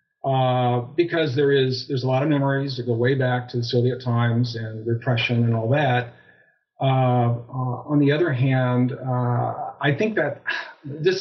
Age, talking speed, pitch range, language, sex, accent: 50-69, 175 wpm, 120-140 Hz, English, male, American